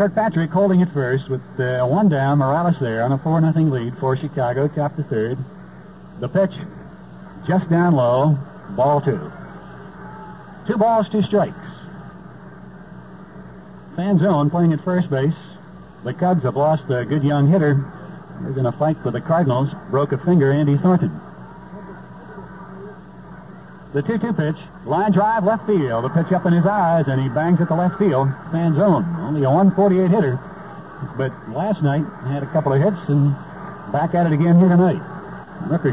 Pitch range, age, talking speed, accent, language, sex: 140-185 Hz, 60-79, 165 wpm, American, English, male